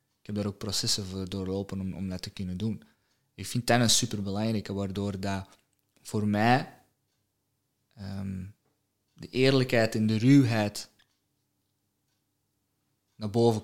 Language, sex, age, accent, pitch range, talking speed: Dutch, male, 20-39, Dutch, 100-110 Hz, 130 wpm